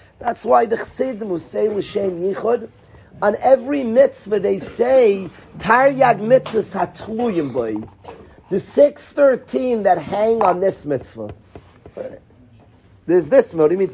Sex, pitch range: male, 195-265 Hz